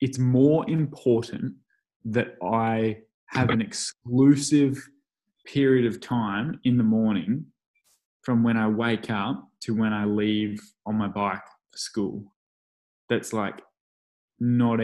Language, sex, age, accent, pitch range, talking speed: English, male, 20-39, Australian, 105-130 Hz, 125 wpm